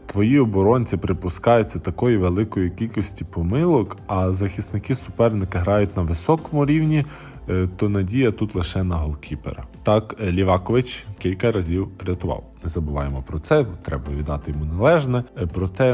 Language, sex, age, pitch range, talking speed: Ukrainian, male, 20-39, 85-110 Hz, 130 wpm